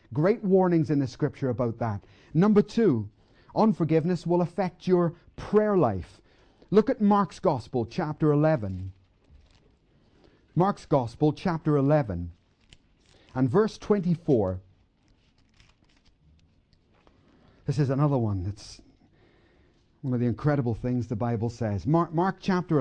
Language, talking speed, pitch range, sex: English, 115 wpm, 125-200 Hz, male